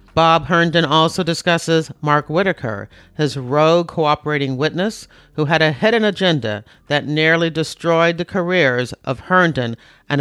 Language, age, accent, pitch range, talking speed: English, 50-69, American, 130-165 Hz, 135 wpm